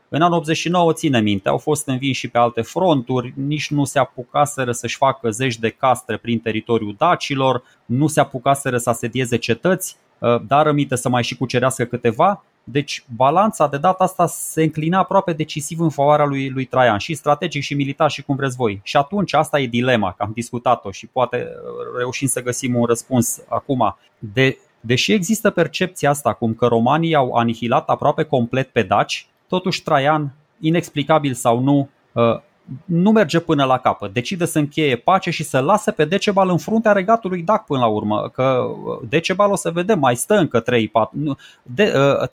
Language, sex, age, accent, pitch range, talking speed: Romanian, male, 20-39, native, 125-170 Hz, 175 wpm